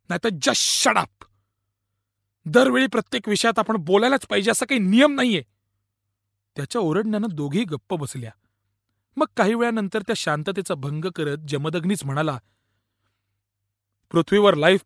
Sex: male